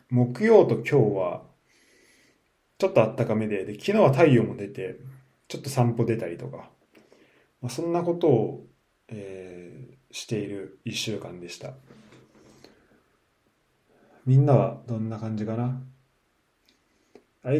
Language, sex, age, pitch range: Japanese, male, 20-39, 110-150 Hz